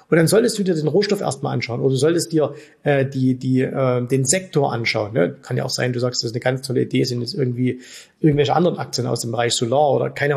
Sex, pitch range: male, 130-165 Hz